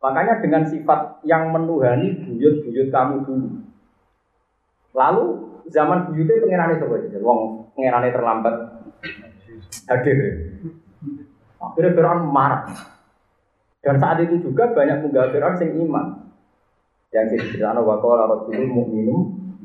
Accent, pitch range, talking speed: native, 110-165 Hz, 105 wpm